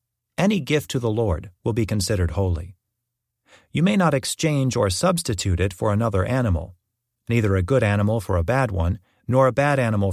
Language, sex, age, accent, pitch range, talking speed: English, male, 40-59, American, 100-130 Hz, 185 wpm